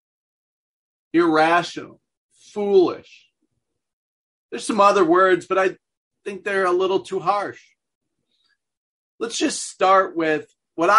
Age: 40-59